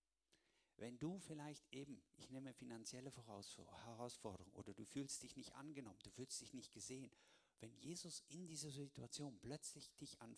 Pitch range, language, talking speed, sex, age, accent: 115-155 Hz, German, 155 wpm, male, 50-69, German